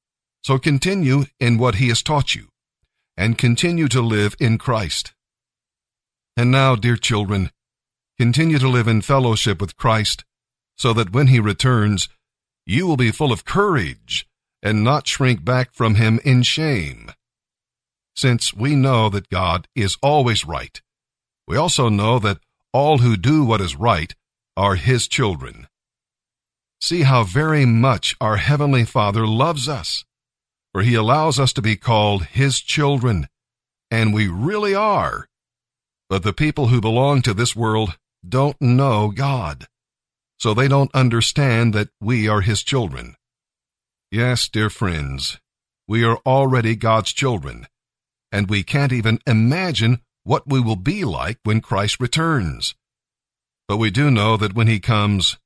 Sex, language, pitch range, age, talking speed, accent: male, English, 105-135 Hz, 50-69, 145 wpm, American